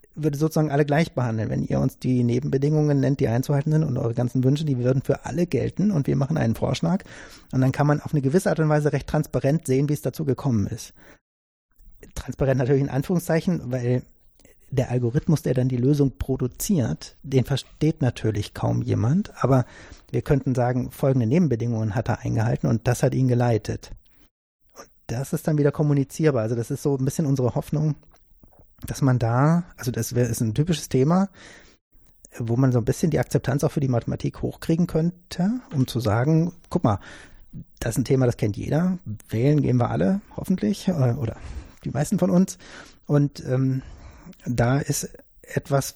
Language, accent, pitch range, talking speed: German, German, 120-150 Hz, 185 wpm